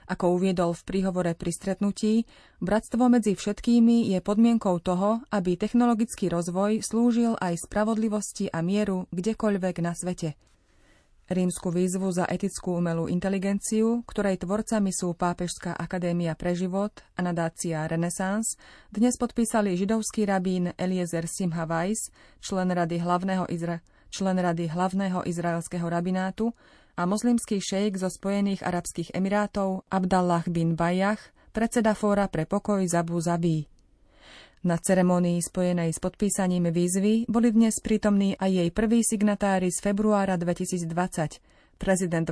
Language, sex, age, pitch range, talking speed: Slovak, female, 30-49, 175-210 Hz, 125 wpm